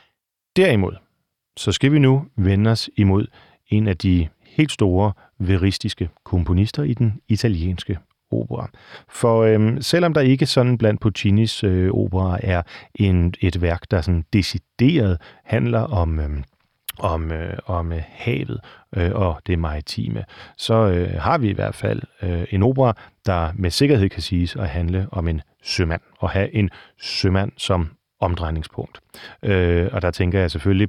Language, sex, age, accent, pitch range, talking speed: Danish, male, 40-59, native, 90-110 Hz, 155 wpm